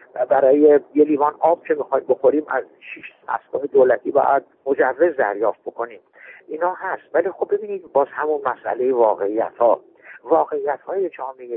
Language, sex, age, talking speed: Persian, male, 60-79, 140 wpm